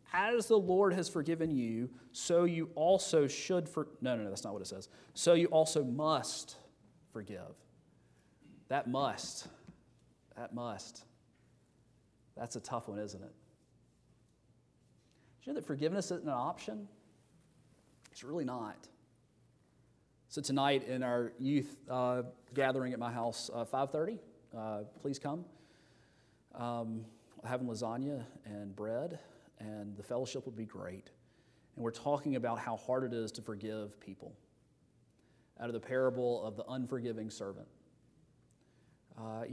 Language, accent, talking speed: English, American, 140 wpm